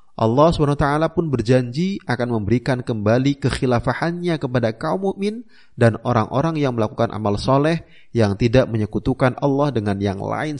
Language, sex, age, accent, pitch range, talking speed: Indonesian, male, 30-49, native, 115-170 Hz, 135 wpm